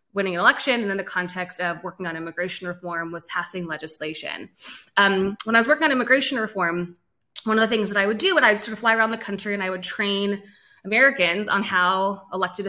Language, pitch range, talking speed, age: English, 180-215 Hz, 220 wpm, 20-39